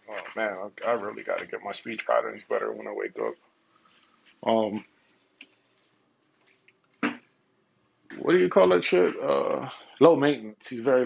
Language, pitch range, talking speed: English, 110-140 Hz, 140 wpm